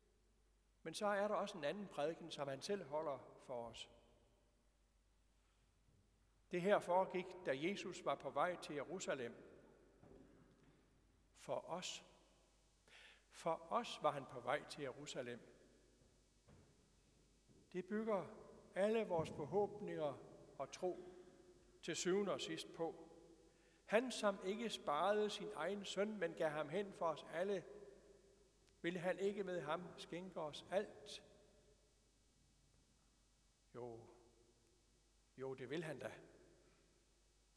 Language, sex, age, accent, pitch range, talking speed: Danish, male, 60-79, native, 140-200 Hz, 120 wpm